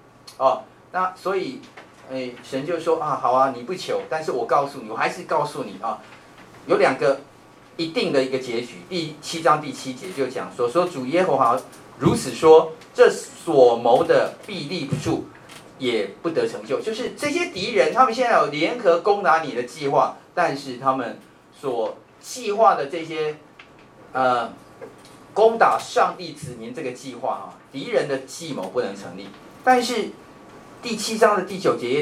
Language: Chinese